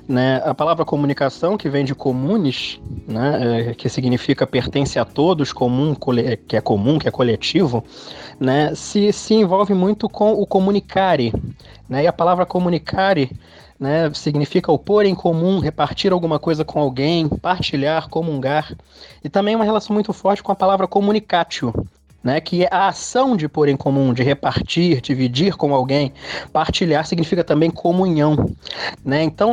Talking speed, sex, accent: 160 wpm, male, Brazilian